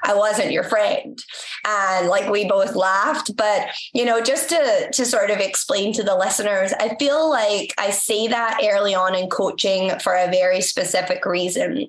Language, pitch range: English, 205-270 Hz